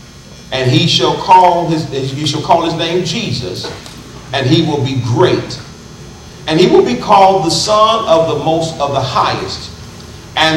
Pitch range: 120-175 Hz